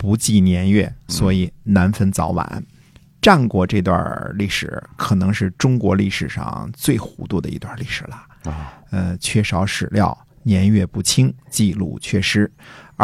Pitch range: 95-130 Hz